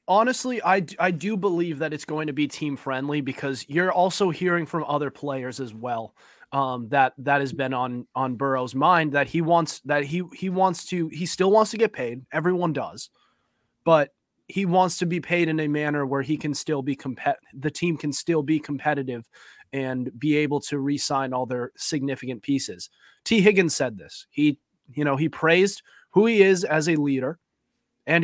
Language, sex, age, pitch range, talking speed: English, male, 30-49, 140-180 Hz, 195 wpm